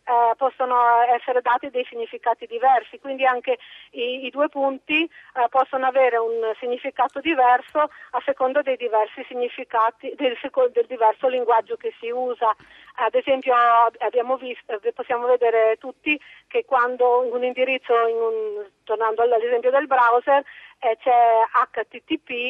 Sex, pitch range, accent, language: female, 230-285 Hz, native, Italian